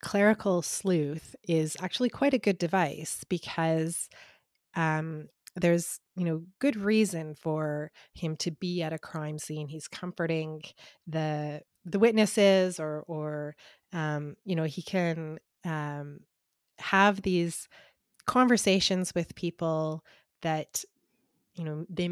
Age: 30-49